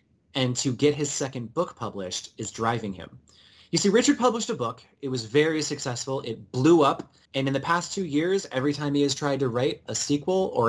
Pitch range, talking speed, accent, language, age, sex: 125-165 Hz, 220 wpm, American, English, 30-49, male